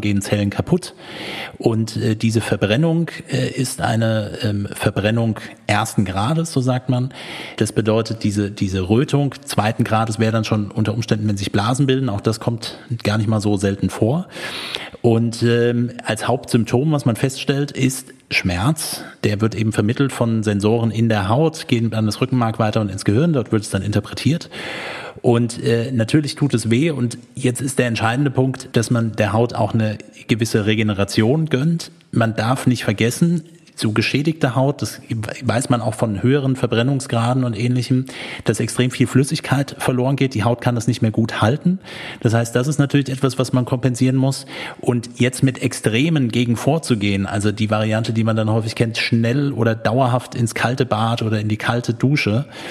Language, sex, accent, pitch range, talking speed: German, male, German, 110-130 Hz, 180 wpm